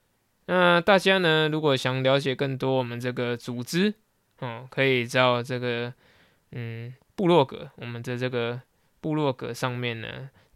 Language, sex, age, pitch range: Chinese, male, 20-39, 120-145 Hz